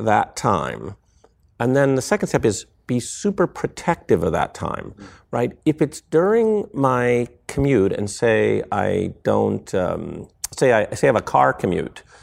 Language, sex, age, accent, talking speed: English, male, 50-69, American, 160 wpm